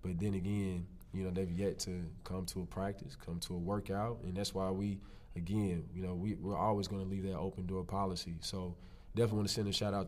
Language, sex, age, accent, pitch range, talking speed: English, male, 20-39, American, 90-100 Hz, 230 wpm